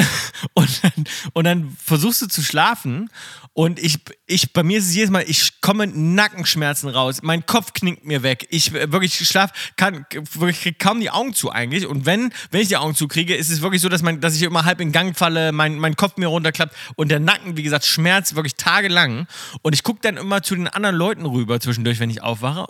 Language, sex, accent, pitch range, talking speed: German, male, German, 155-205 Hz, 220 wpm